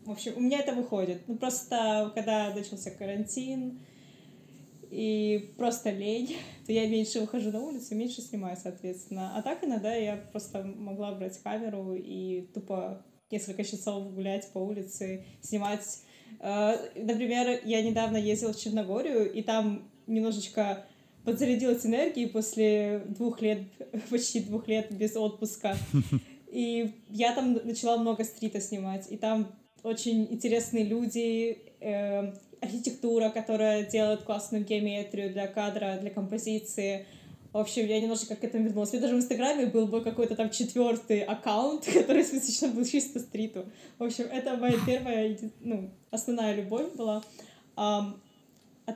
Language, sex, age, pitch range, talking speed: Ukrainian, female, 20-39, 205-235 Hz, 140 wpm